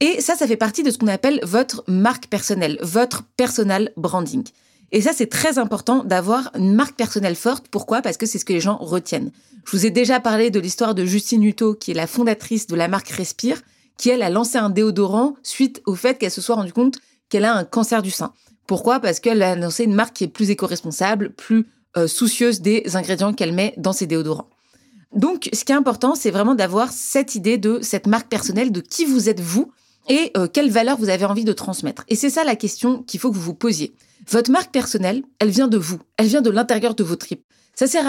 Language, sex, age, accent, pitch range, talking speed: French, female, 30-49, French, 205-260 Hz, 235 wpm